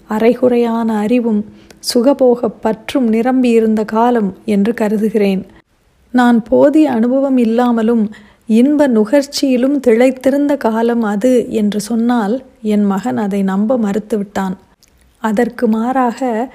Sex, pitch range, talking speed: female, 215-255 Hz, 95 wpm